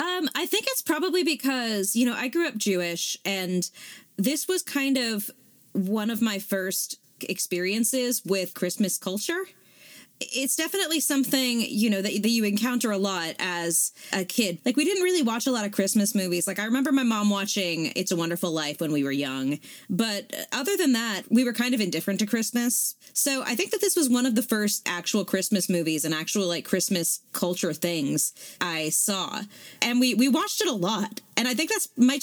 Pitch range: 185-270 Hz